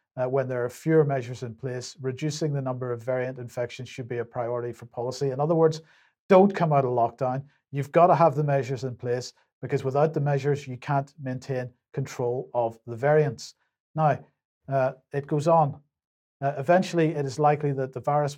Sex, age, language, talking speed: male, 50-69, English, 195 wpm